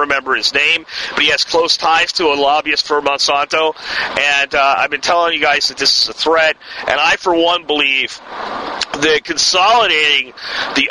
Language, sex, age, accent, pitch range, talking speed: English, male, 40-59, American, 150-195 Hz, 180 wpm